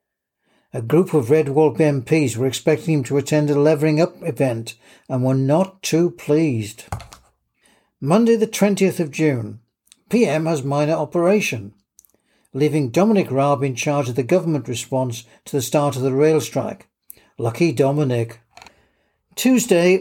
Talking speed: 145 wpm